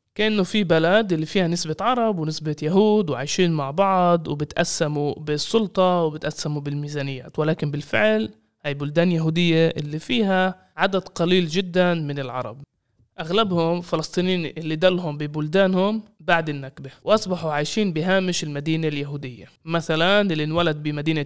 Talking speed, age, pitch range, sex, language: 125 wpm, 20-39, 150-175 Hz, male, Arabic